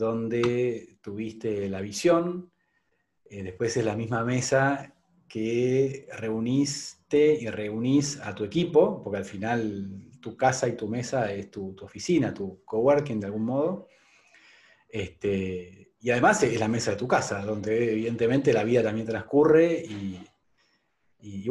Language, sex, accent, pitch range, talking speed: Spanish, male, Argentinian, 105-135 Hz, 140 wpm